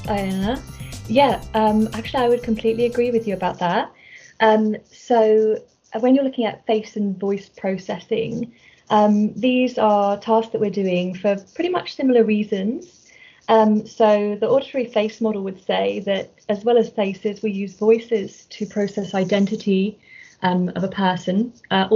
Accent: British